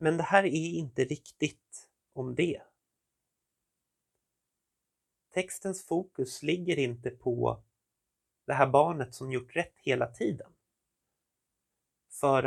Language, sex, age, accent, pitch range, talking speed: Swedish, male, 30-49, native, 130-165 Hz, 105 wpm